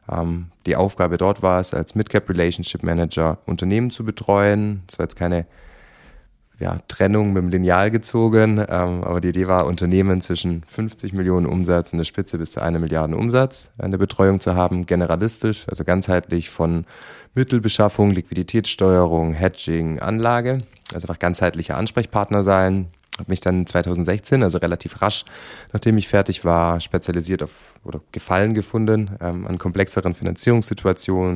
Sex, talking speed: male, 145 wpm